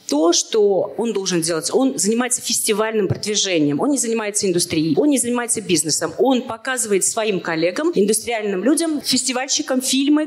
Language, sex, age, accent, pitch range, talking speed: Russian, female, 40-59, native, 200-265 Hz, 145 wpm